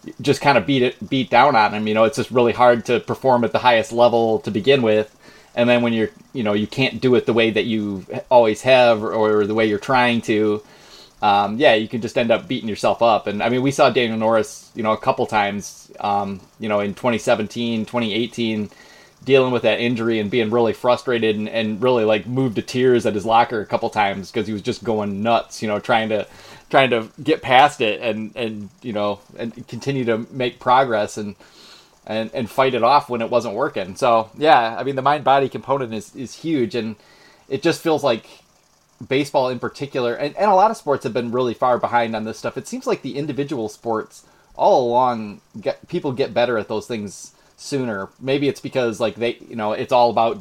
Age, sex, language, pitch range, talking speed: 20-39, male, English, 110-130 Hz, 225 wpm